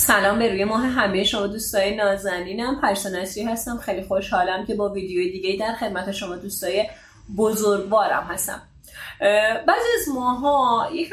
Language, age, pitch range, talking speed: Persian, 30-49, 200-280 Hz, 140 wpm